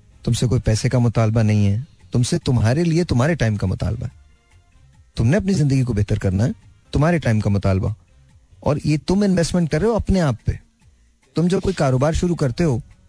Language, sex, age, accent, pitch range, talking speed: Hindi, male, 30-49, native, 105-140 Hz, 195 wpm